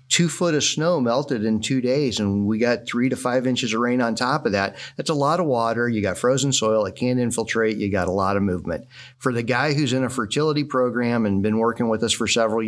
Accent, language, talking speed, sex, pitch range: American, English, 255 wpm, male, 105-130 Hz